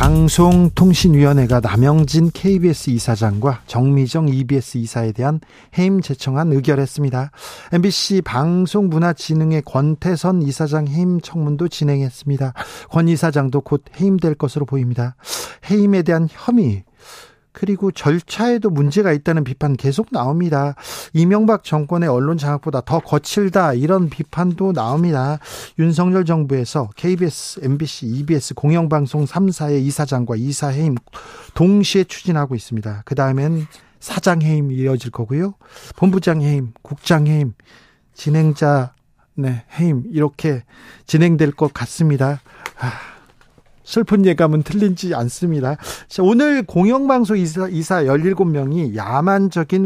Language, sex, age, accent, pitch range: Korean, male, 40-59, native, 135-170 Hz